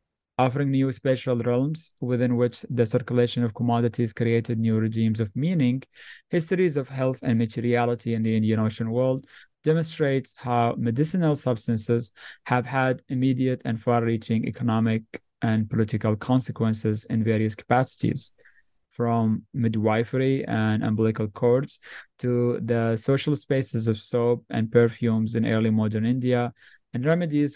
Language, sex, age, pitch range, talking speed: English, male, 20-39, 110-130 Hz, 130 wpm